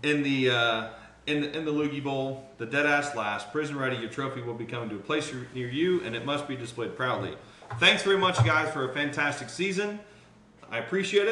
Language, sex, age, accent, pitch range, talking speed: English, male, 40-59, American, 115-150 Hz, 205 wpm